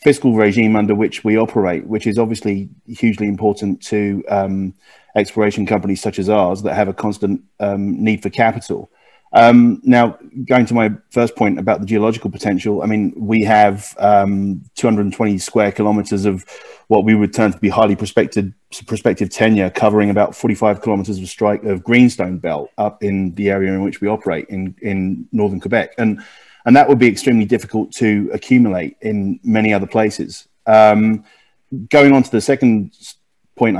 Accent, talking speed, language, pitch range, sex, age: British, 170 wpm, English, 100-115 Hz, male, 30-49